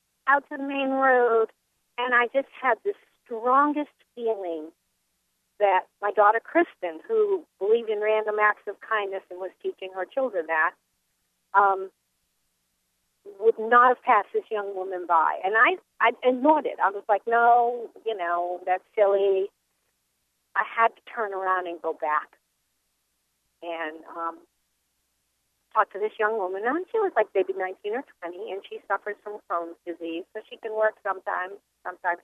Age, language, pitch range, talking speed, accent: 40-59, English, 175-245 Hz, 160 wpm, American